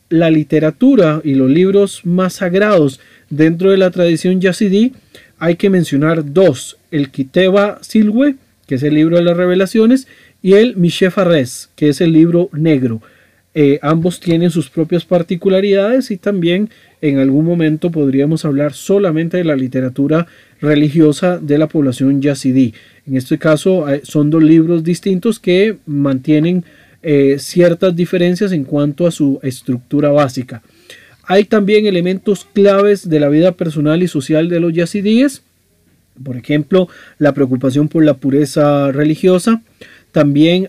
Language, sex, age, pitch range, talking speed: Spanish, male, 40-59, 140-180 Hz, 145 wpm